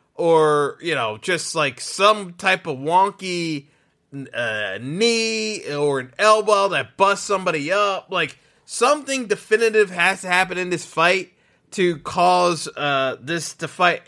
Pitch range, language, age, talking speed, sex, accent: 160-220 Hz, English, 20-39, 145 wpm, male, American